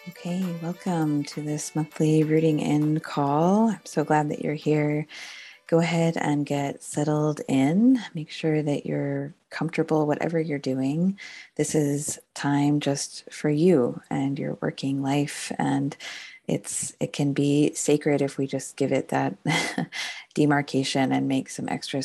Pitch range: 135-160 Hz